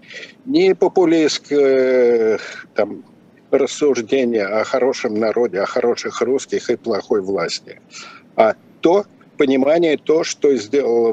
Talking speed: 100 wpm